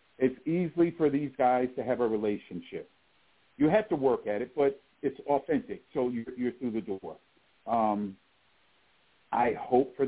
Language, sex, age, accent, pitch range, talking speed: English, male, 50-69, American, 100-140 Hz, 165 wpm